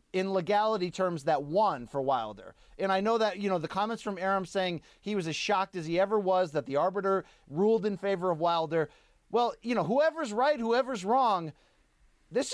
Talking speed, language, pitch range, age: 200 wpm, English, 190-255 Hz, 30-49